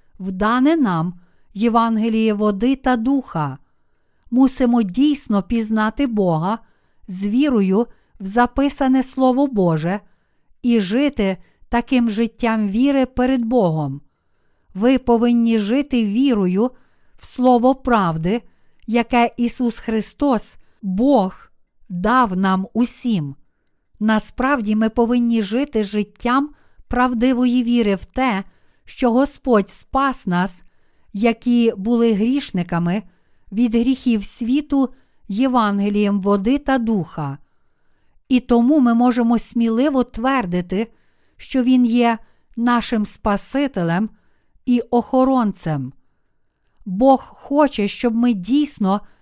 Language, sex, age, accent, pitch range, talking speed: Ukrainian, female, 50-69, native, 205-255 Hz, 95 wpm